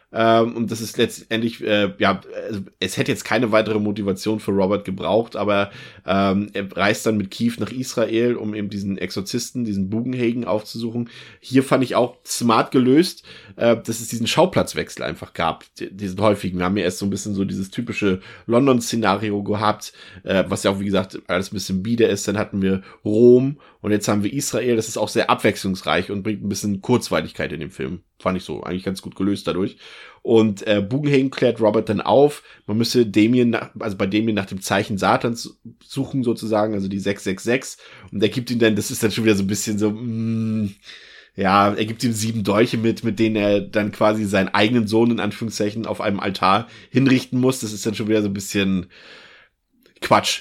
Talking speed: 200 wpm